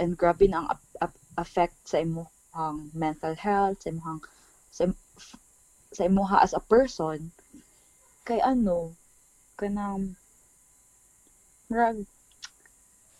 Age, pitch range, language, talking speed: 20-39, 165-205 Hz, Filipino, 115 wpm